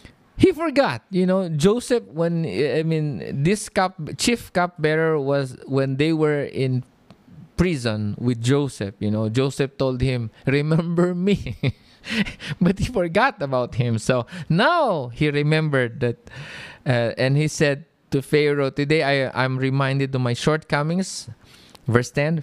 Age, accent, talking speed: 20-39, Filipino, 140 wpm